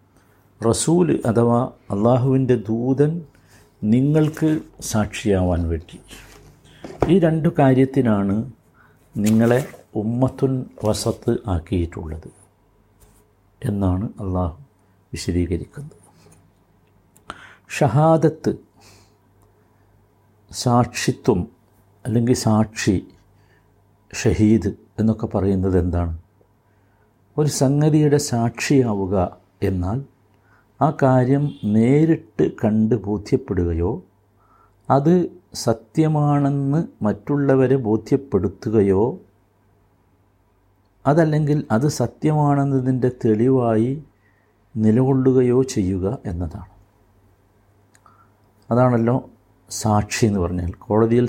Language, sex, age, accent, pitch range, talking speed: Malayalam, male, 60-79, native, 100-130 Hz, 60 wpm